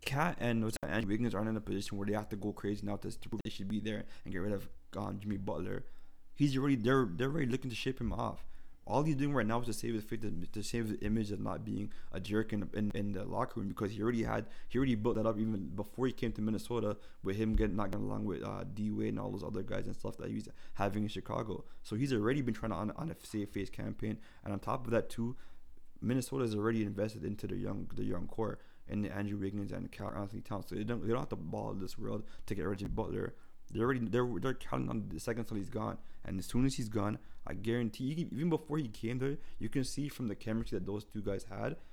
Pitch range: 100-120 Hz